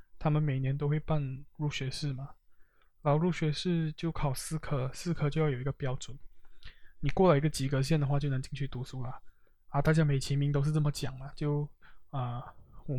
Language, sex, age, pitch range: Chinese, male, 20-39, 135-160 Hz